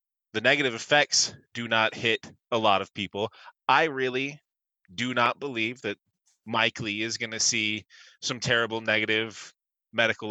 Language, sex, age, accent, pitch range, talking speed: English, male, 30-49, American, 105-130 Hz, 150 wpm